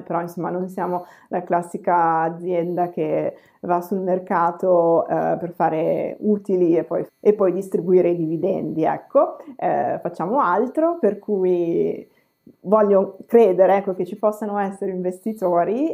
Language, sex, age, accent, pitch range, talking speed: Italian, female, 20-39, native, 170-205 Hz, 130 wpm